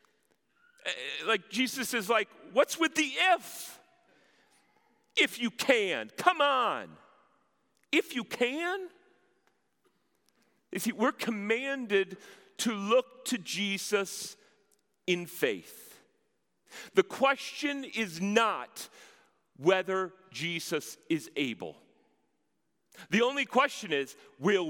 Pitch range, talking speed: 195-265 Hz, 95 wpm